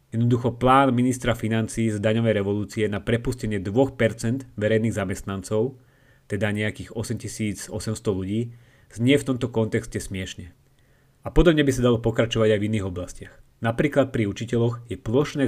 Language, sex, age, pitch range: Slovak, male, 30-49, 110-130 Hz